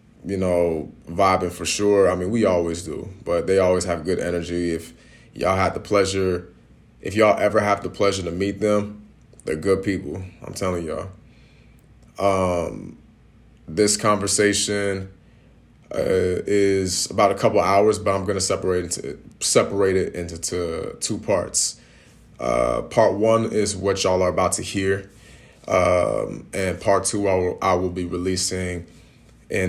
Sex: male